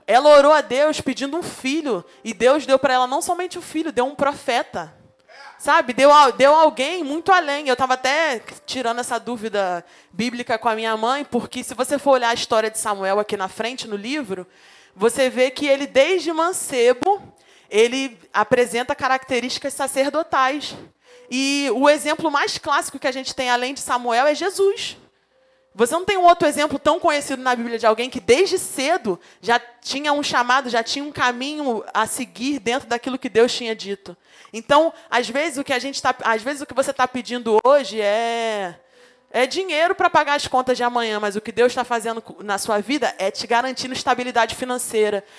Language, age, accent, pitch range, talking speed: Portuguese, 20-39, Brazilian, 235-295 Hz, 180 wpm